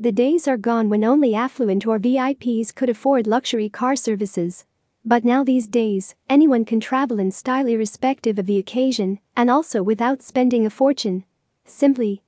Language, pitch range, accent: English, 215-260 Hz, American